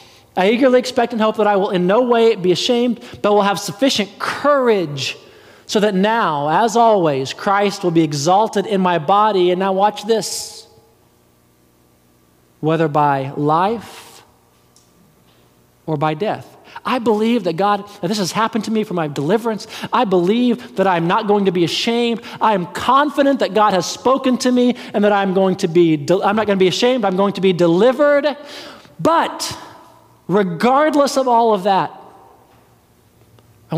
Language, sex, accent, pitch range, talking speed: English, male, American, 130-215 Hz, 165 wpm